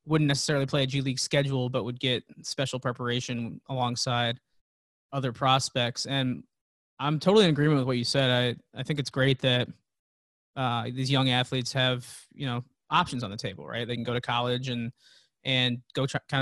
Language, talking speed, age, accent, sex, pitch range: English, 185 wpm, 20-39, American, male, 125-140 Hz